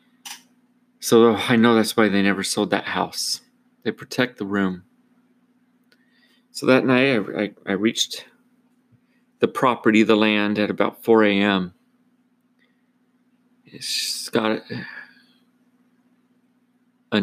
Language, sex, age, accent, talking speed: English, male, 40-59, American, 115 wpm